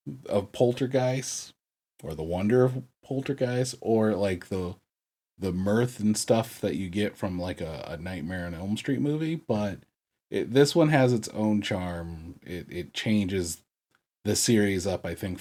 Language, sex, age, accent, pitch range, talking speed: English, male, 30-49, American, 85-115 Hz, 165 wpm